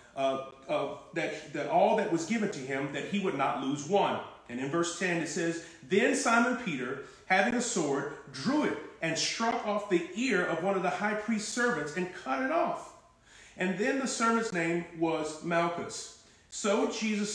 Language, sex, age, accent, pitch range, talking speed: English, male, 40-59, American, 155-200 Hz, 190 wpm